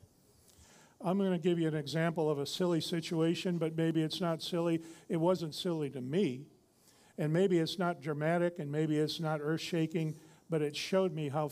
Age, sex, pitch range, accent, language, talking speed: 50-69, male, 155-175 Hz, American, English, 190 wpm